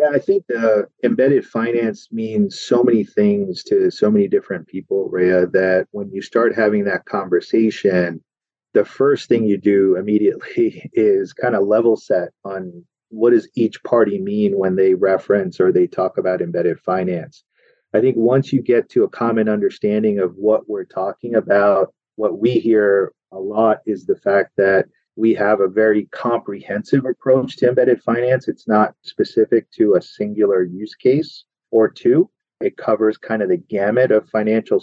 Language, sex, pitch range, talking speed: English, male, 105-150 Hz, 170 wpm